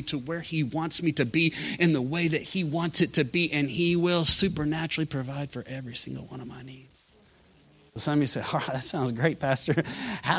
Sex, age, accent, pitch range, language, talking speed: male, 30-49, American, 130-165 Hz, English, 225 wpm